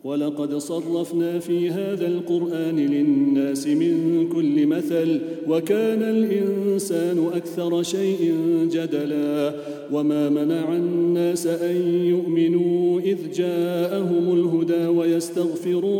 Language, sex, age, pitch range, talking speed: English, male, 40-59, 165-185 Hz, 85 wpm